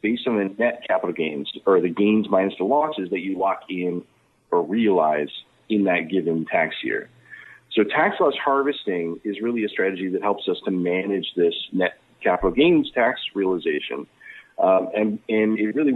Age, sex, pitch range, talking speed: 40-59, male, 95-135 Hz, 175 wpm